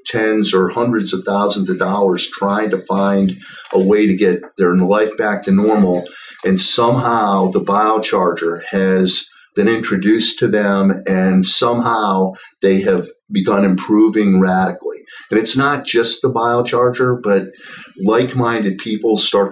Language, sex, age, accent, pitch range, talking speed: English, male, 50-69, American, 95-120 Hz, 140 wpm